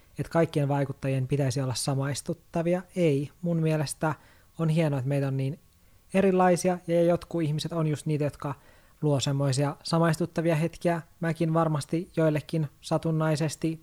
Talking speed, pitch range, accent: 135 wpm, 140-160 Hz, native